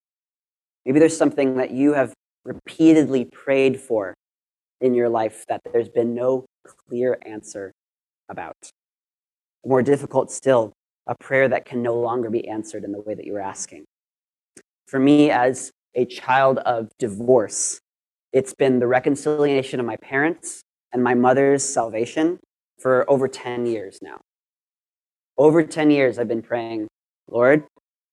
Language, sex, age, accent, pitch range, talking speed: English, male, 30-49, American, 115-140 Hz, 145 wpm